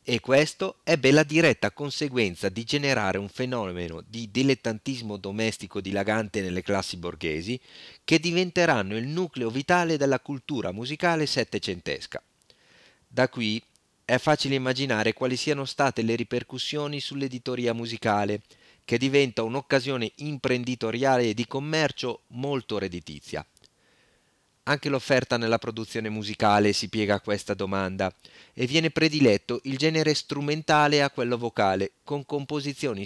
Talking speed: 125 wpm